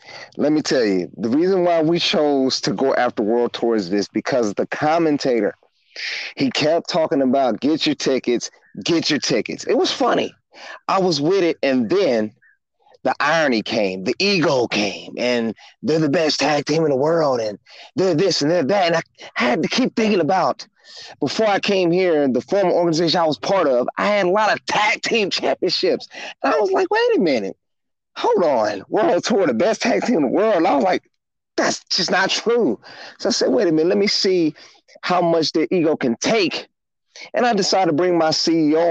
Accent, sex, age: American, male, 30-49